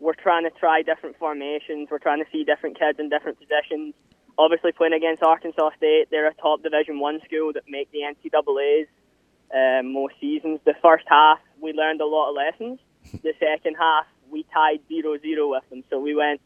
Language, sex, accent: English, male, British